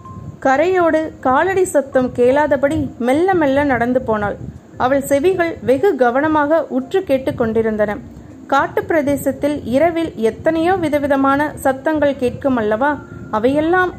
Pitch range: 250-310 Hz